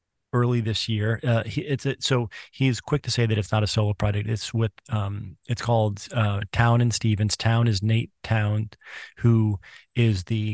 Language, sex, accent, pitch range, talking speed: English, male, American, 105-120 Hz, 180 wpm